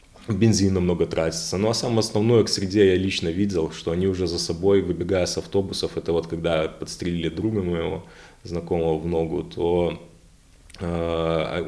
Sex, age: male, 20-39